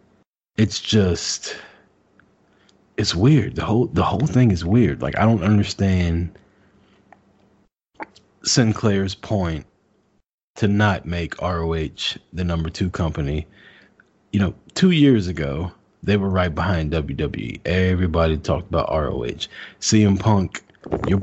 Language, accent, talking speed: English, American, 120 wpm